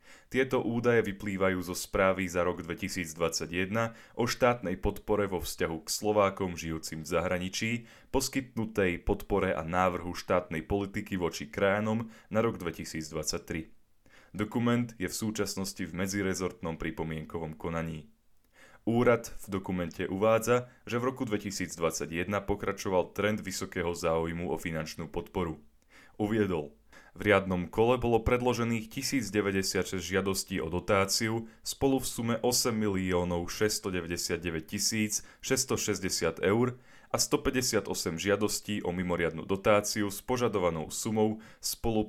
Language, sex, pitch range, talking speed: Slovak, male, 90-115 Hz, 115 wpm